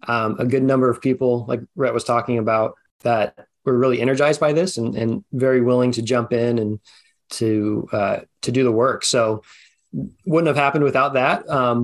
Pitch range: 115-135 Hz